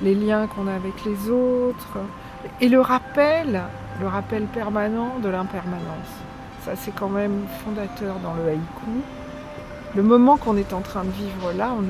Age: 60-79